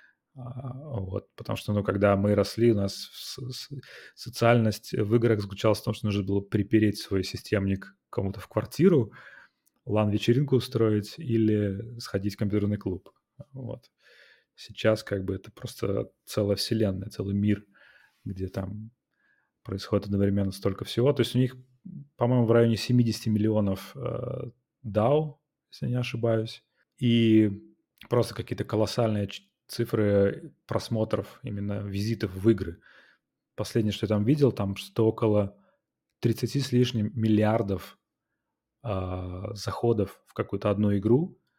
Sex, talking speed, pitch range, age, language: male, 130 wpm, 100-120 Hz, 30-49, Russian